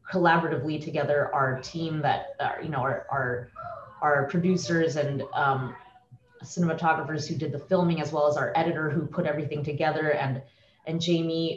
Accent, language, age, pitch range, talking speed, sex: American, English, 20-39, 150-175 Hz, 160 wpm, female